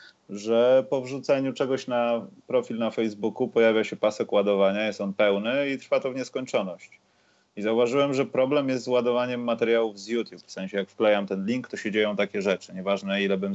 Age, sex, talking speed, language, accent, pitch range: 30-49, male, 195 wpm, Polish, native, 105-130 Hz